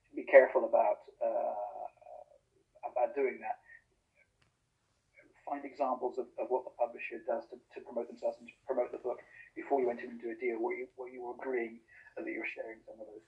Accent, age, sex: British, 50-69, male